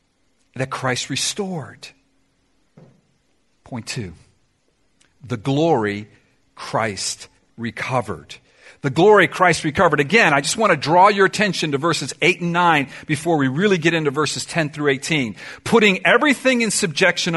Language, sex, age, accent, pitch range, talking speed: English, male, 50-69, American, 150-210 Hz, 135 wpm